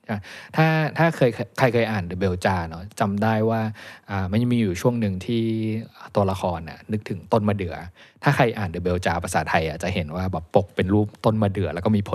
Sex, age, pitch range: male, 20-39, 95-115 Hz